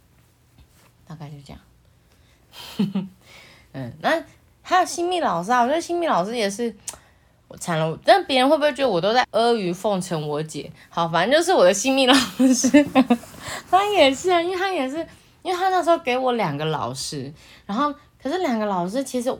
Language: Chinese